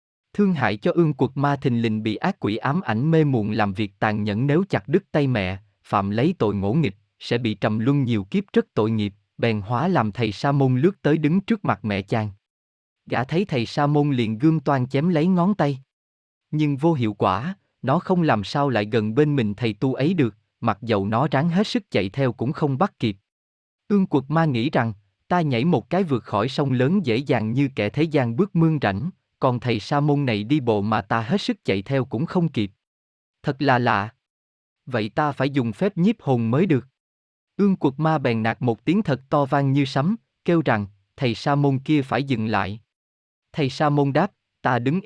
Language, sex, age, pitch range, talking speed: Vietnamese, male, 20-39, 110-155 Hz, 225 wpm